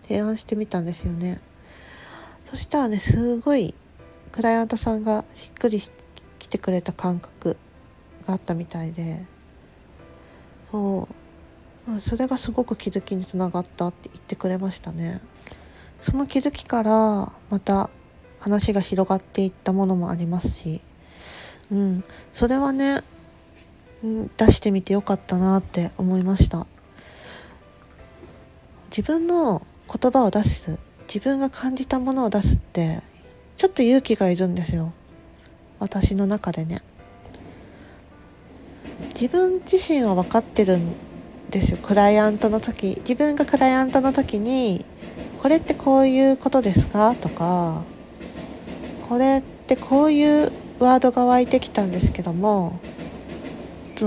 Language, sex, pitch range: Japanese, female, 180-255 Hz